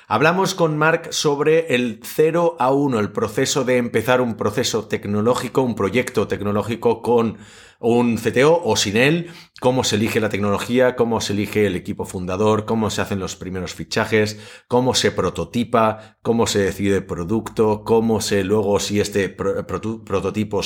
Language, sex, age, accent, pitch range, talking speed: Spanish, male, 30-49, Spanish, 95-115 Hz, 160 wpm